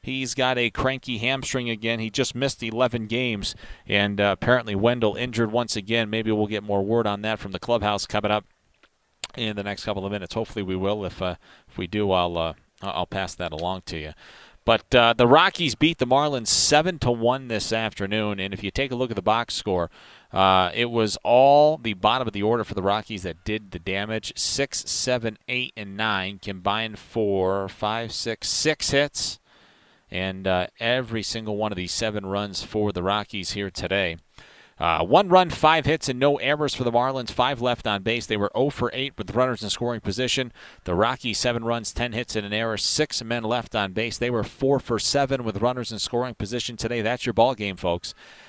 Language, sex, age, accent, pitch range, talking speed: English, male, 30-49, American, 100-125 Hz, 210 wpm